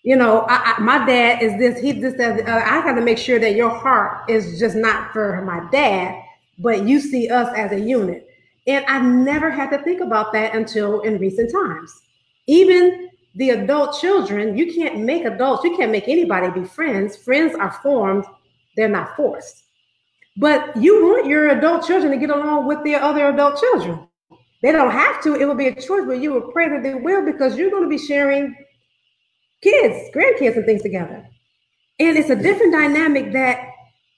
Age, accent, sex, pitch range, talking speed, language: 40-59, American, female, 205-290 Hz, 195 wpm, English